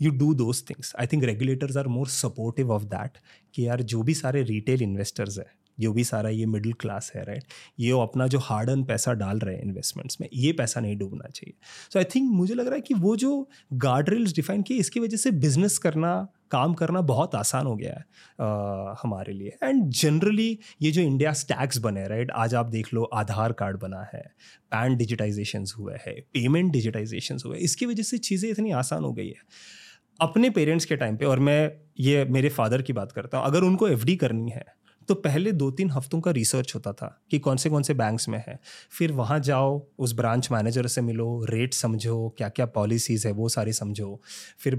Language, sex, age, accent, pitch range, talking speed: Hindi, male, 30-49, native, 115-155 Hz, 210 wpm